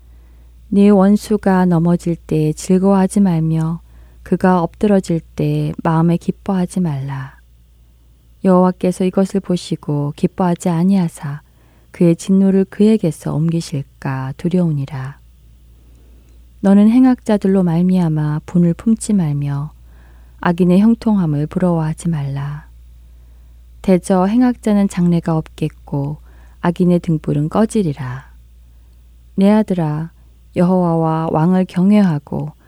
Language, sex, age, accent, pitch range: Korean, female, 20-39, native, 140-185 Hz